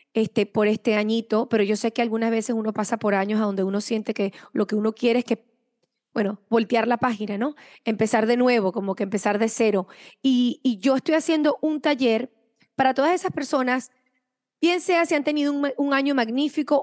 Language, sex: English, female